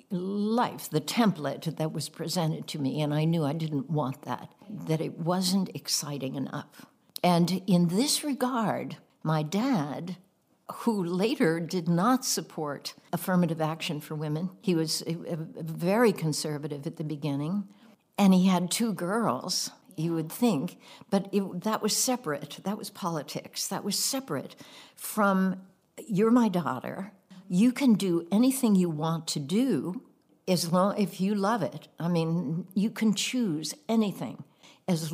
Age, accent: 60-79, American